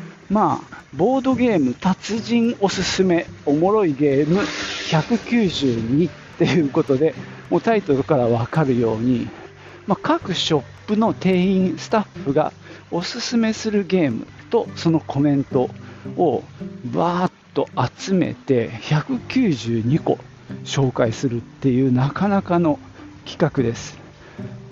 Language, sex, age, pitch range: Japanese, male, 50-69, 125-190 Hz